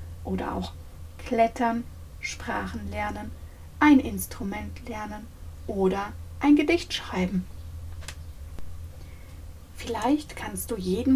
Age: 40-59